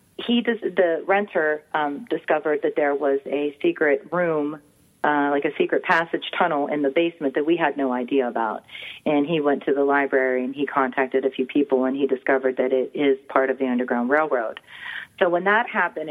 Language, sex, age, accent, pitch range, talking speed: English, female, 30-49, American, 135-180 Hz, 200 wpm